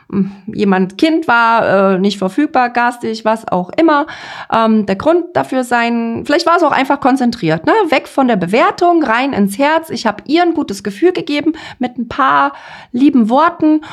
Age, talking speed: 30-49, 170 wpm